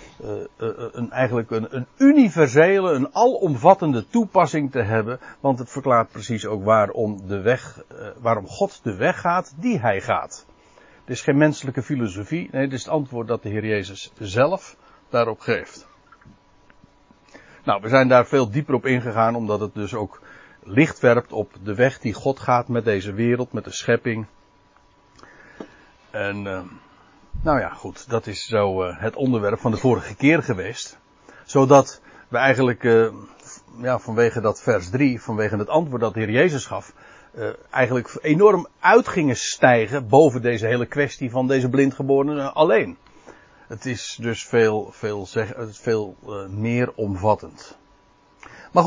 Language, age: Dutch, 60-79